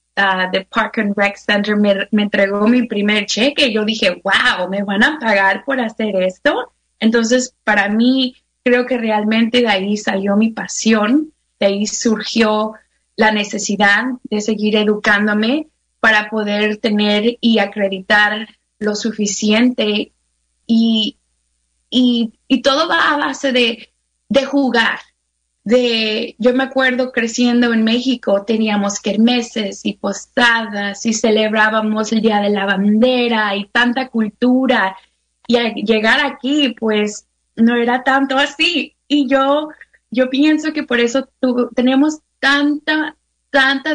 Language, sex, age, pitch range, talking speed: English, female, 20-39, 210-260 Hz, 130 wpm